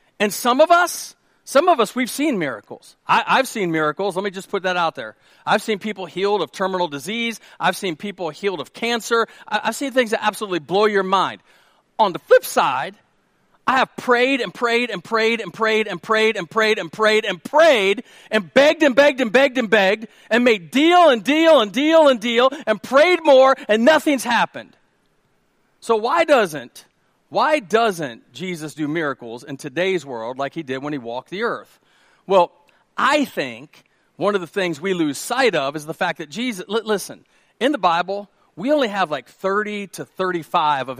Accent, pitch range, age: American, 185-270 Hz, 40-59